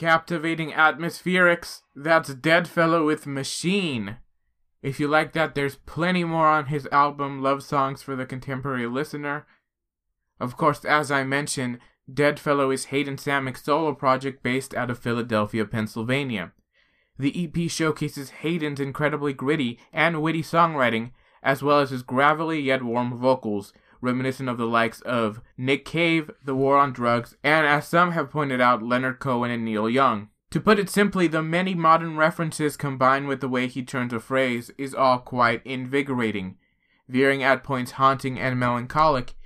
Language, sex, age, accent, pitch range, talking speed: English, male, 20-39, American, 125-150 Hz, 160 wpm